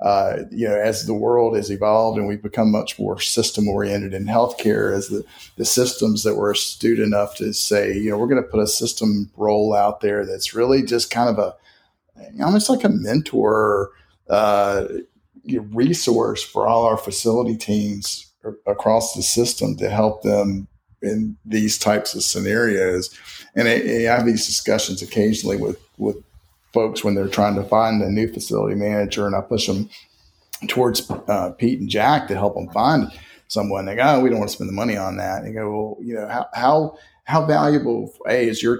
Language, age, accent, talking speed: English, 40-59, American, 190 wpm